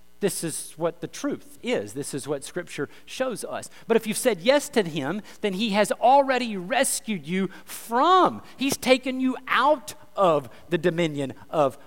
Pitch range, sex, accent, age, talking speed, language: 175-255 Hz, male, American, 50-69, 170 wpm, English